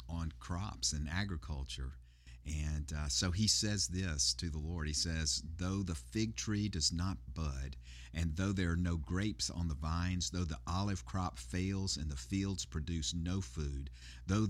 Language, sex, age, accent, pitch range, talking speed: English, male, 50-69, American, 70-95 Hz, 180 wpm